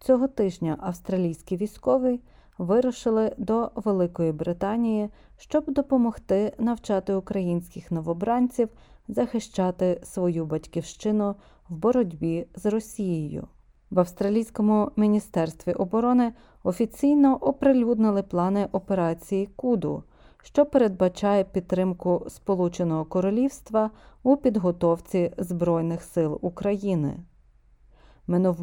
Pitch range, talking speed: 175-225 Hz, 85 wpm